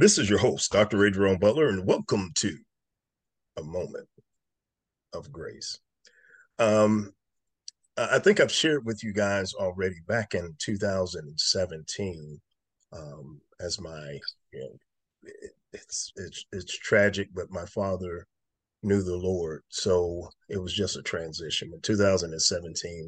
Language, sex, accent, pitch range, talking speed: English, male, American, 85-105 Hz, 130 wpm